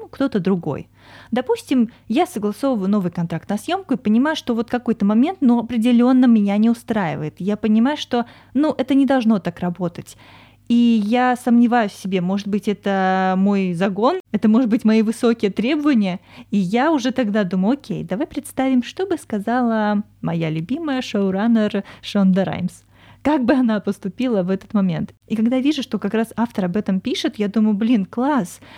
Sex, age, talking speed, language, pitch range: female, 20-39, 175 wpm, Russian, 195-255 Hz